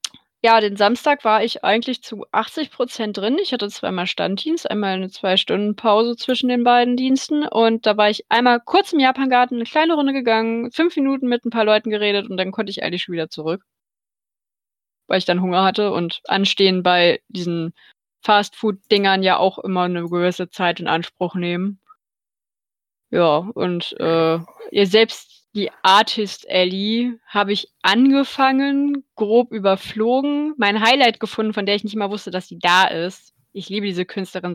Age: 20-39